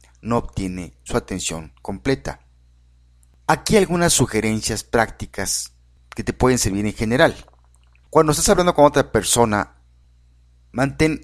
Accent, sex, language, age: Mexican, male, Spanish, 50-69